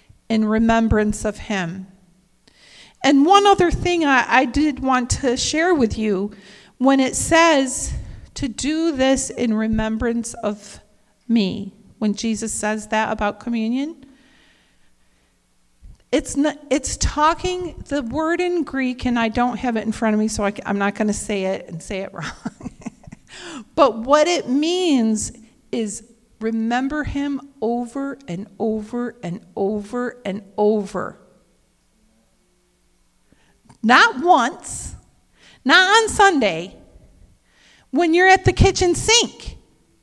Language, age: English, 40-59